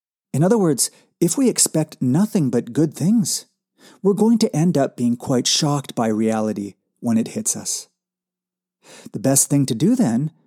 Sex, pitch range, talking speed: male, 125-200 Hz, 170 wpm